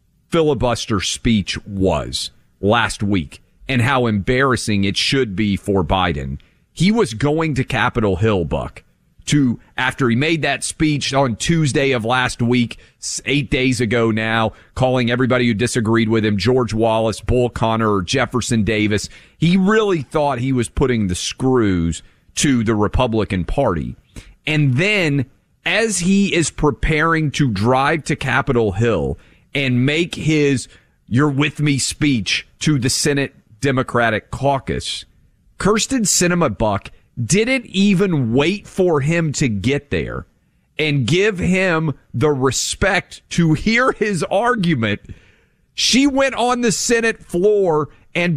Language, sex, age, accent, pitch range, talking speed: English, male, 40-59, American, 110-165 Hz, 135 wpm